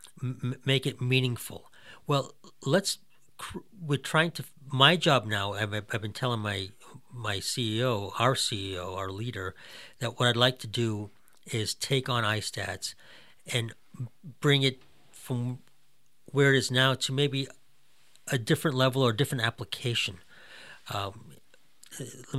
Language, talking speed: English, 135 wpm